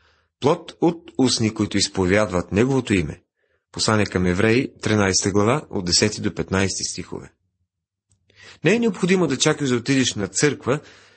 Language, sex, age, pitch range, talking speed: Bulgarian, male, 40-59, 100-140 Hz, 140 wpm